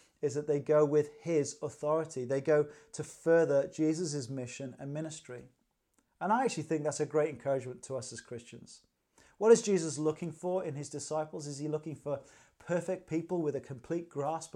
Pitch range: 140-165 Hz